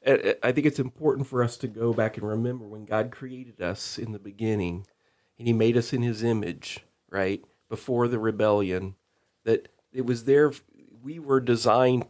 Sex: male